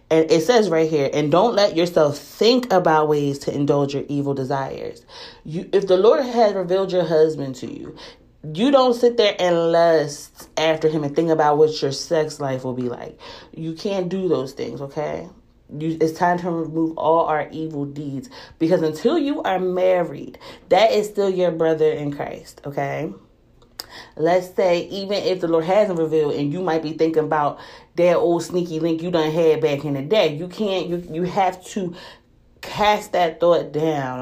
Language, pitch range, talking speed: English, 155-185 Hz, 185 wpm